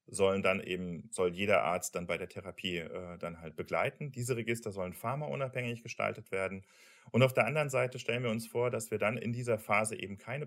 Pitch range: 95-125 Hz